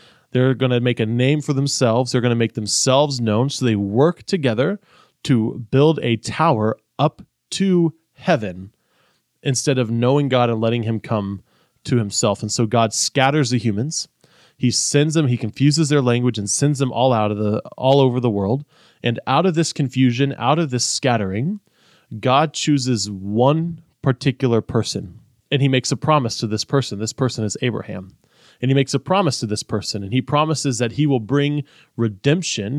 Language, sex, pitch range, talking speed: English, male, 115-145 Hz, 185 wpm